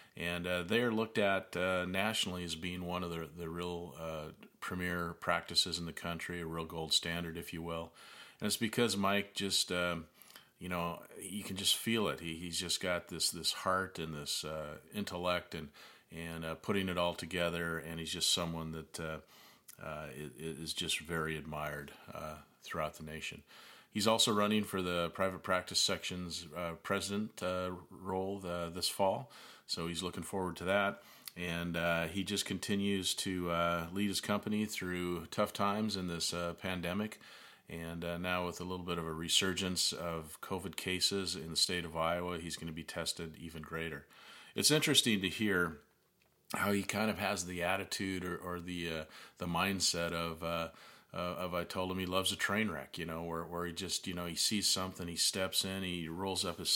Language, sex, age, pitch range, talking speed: English, male, 40-59, 85-95 Hz, 195 wpm